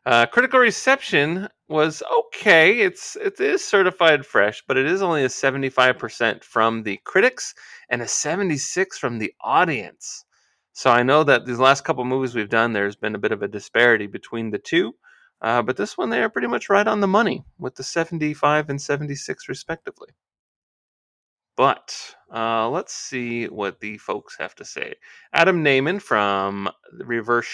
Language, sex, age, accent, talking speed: English, male, 30-49, American, 180 wpm